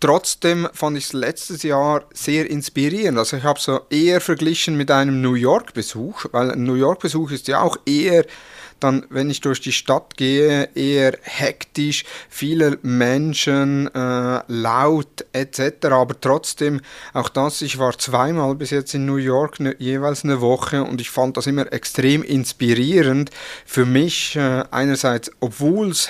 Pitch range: 125-145 Hz